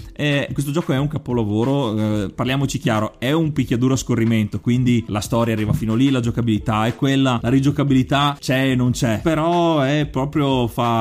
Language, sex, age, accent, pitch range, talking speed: Italian, male, 30-49, native, 115-145 Hz, 185 wpm